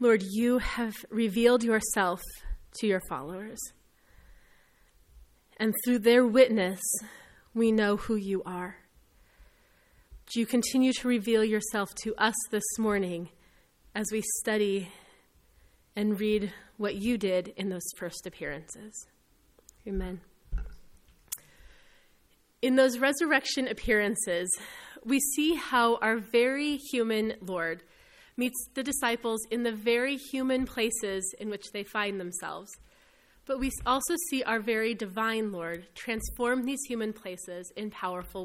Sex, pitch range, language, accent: female, 195-250 Hz, English, American